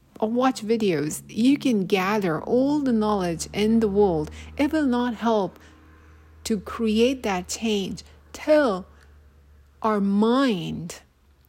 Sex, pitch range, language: female, 170-230 Hz, English